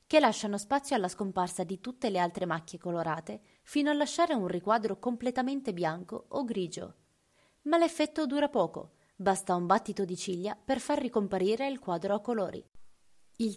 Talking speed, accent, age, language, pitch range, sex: 165 wpm, native, 20-39, Italian, 185-245 Hz, female